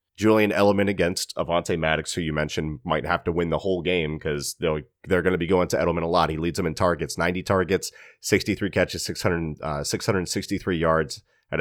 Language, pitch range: English, 85-100 Hz